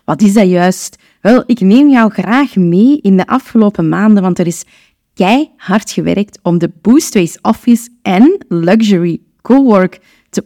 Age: 20-39